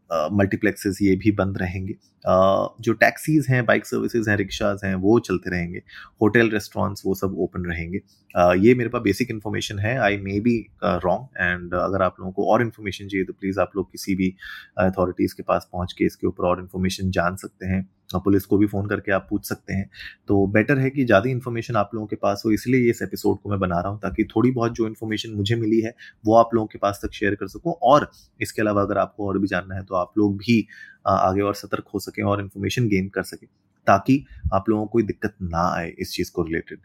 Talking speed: 230 wpm